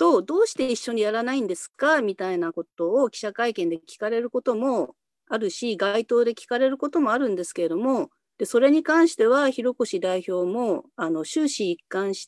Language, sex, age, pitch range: Japanese, female, 40-59, 180-290 Hz